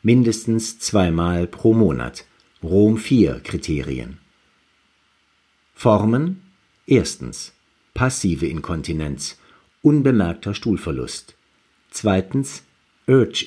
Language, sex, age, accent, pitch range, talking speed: German, male, 50-69, German, 95-125 Hz, 65 wpm